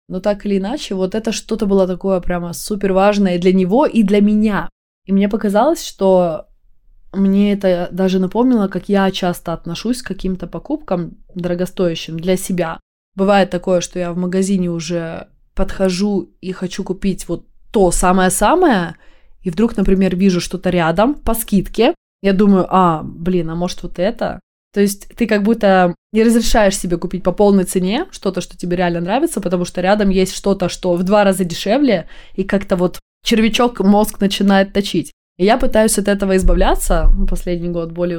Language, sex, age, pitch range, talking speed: Russian, female, 20-39, 180-210 Hz, 170 wpm